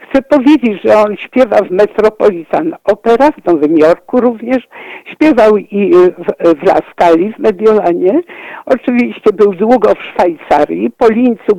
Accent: Polish